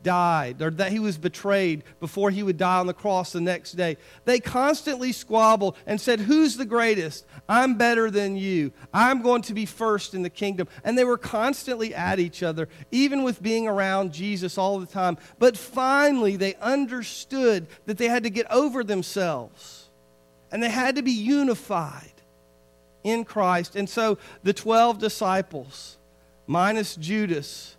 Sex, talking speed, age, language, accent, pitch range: male, 165 wpm, 40-59, English, American, 165-225 Hz